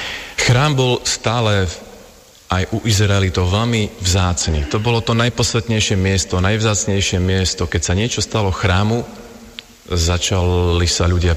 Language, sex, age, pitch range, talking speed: Slovak, male, 40-59, 90-110 Hz, 125 wpm